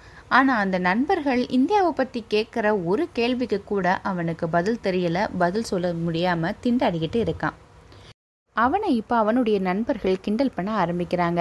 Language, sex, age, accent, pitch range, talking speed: Tamil, female, 20-39, native, 175-235 Hz, 125 wpm